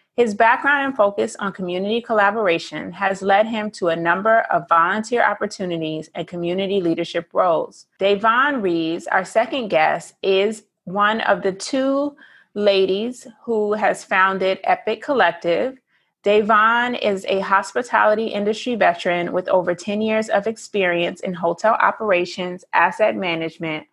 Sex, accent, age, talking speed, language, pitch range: female, American, 30-49, 135 wpm, English, 175-215 Hz